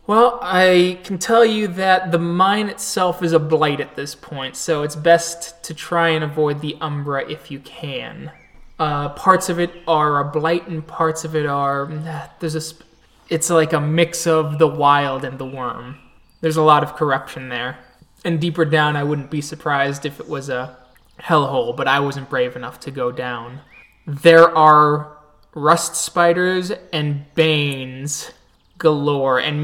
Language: English